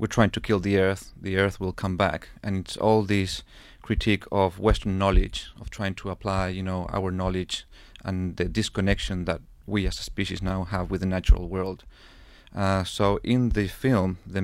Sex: male